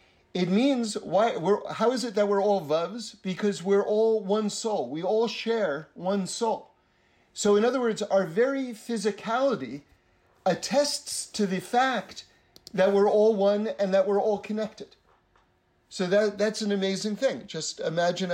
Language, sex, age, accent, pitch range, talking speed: English, male, 50-69, American, 165-210 Hz, 160 wpm